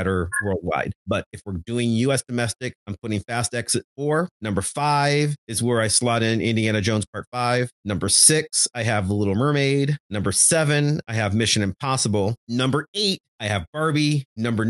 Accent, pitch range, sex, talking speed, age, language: American, 105-135 Hz, male, 175 wpm, 30-49, English